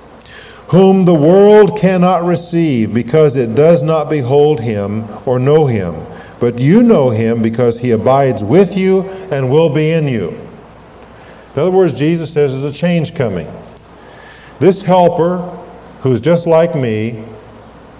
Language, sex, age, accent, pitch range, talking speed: English, male, 50-69, American, 125-170 Hz, 145 wpm